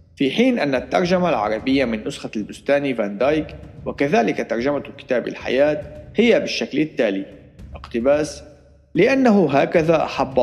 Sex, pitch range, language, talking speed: male, 115-155 Hz, Arabic, 120 wpm